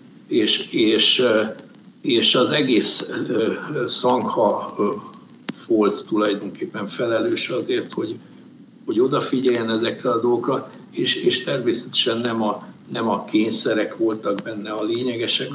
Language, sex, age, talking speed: Hungarian, male, 60-79, 110 wpm